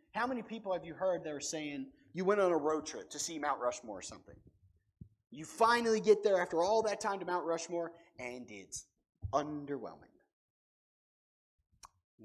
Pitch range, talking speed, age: 135-215 Hz, 175 wpm, 30-49